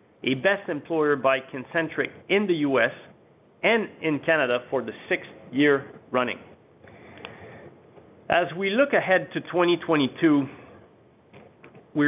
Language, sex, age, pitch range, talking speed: English, male, 40-59, 130-165 Hz, 115 wpm